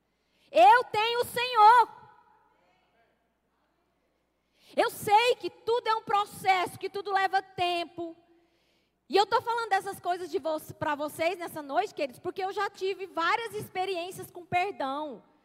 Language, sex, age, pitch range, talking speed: Portuguese, female, 20-39, 345-430 Hz, 130 wpm